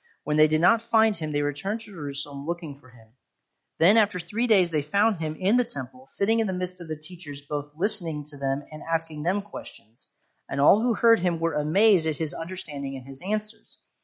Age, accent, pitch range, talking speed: 40-59, American, 135-185 Hz, 220 wpm